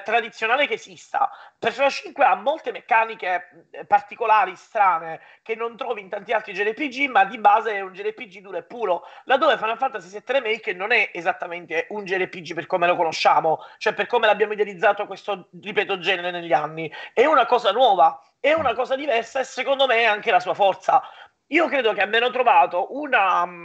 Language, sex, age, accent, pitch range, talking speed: Italian, male, 30-49, native, 190-255 Hz, 180 wpm